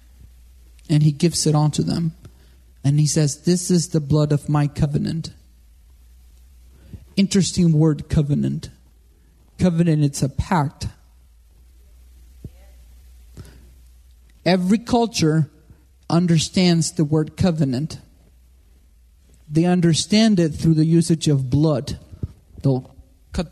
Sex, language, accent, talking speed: male, English, American, 100 wpm